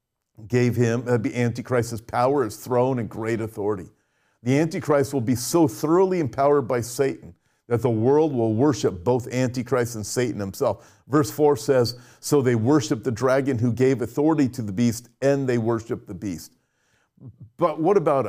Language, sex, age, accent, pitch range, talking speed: English, male, 50-69, American, 120-165 Hz, 175 wpm